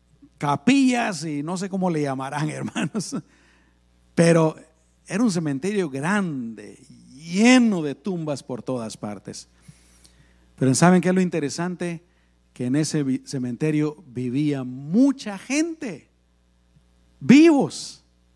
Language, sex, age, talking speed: Spanish, male, 50-69, 110 wpm